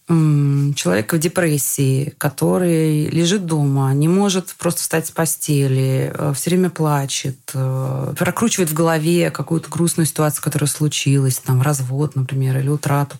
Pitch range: 140-180 Hz